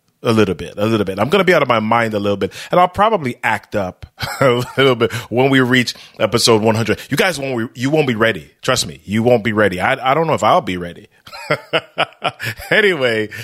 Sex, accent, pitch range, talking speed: male, American, 105-140 Hz, 230 wpm